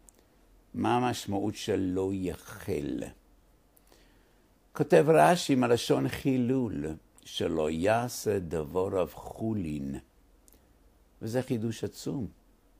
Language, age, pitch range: English, 60-79, 85-115 Hz